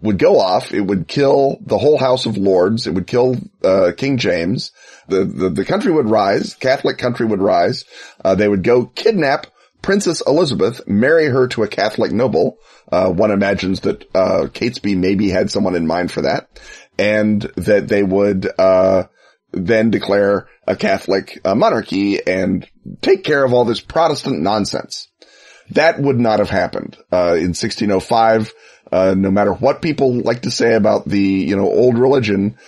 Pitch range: 95-125 Hz